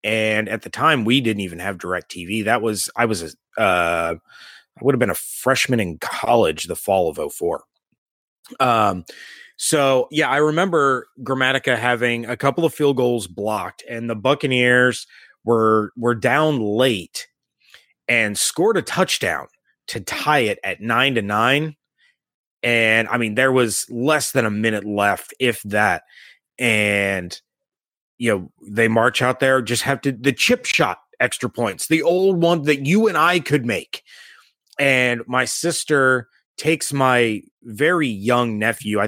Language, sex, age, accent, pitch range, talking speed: English, male, 30-49, American, 105-135 Hz, 160 wpm